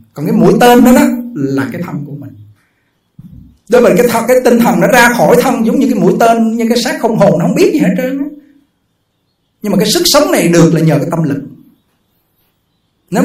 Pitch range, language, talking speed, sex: 135-200 Hz, Vietnamese, 230 wpm, male